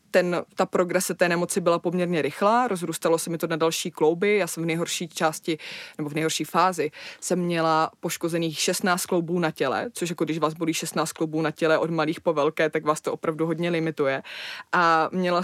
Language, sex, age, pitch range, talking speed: Czech, female, 20-39, 170-215 Hz, 200 wpm